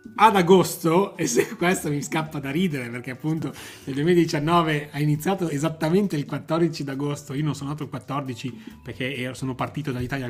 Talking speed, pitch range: 170 wpm, 125-150 Hz